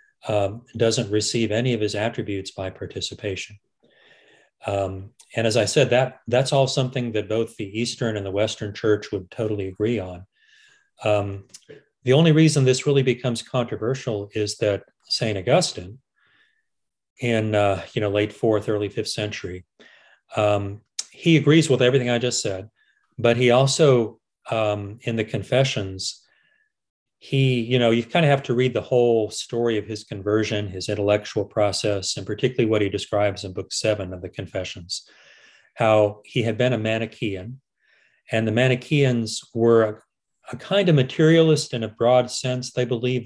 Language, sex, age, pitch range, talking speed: English, male, 40-59, 105-125 Hz, 160 wpm